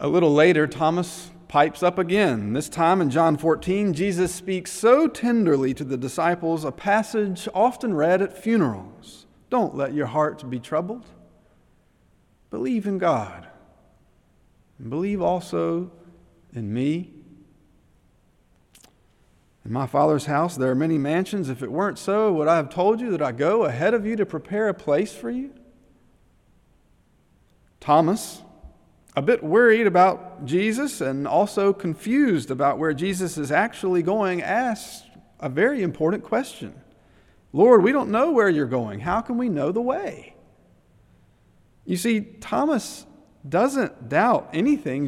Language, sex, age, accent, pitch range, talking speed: English, male, 40-59, American, 150-215 Hz, 140 wpm